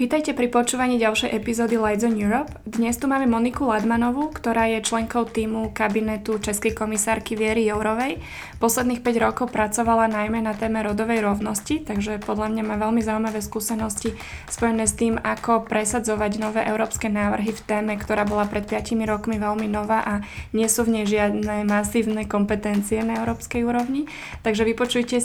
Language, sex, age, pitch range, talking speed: English, female, 20-39, 210-230 Hz, 160 wpm